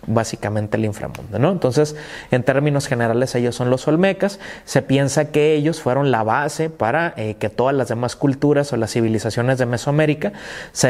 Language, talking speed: Spanish, 175 wpm